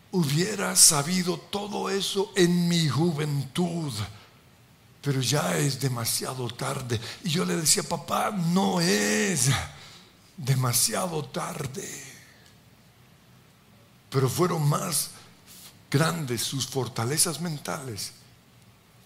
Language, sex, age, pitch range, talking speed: Spanish, male, 60-79, 120-175 Hz, 90 wpm